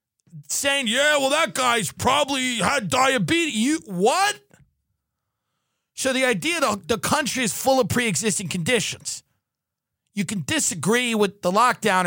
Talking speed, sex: 140 wpm, male